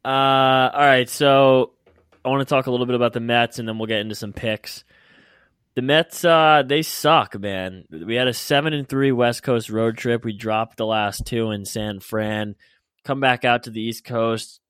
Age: 20-39